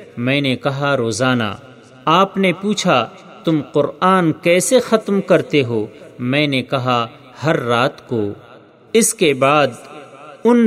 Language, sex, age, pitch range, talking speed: Urdu, male, 40-59, 125-175 Hz, 130 wpm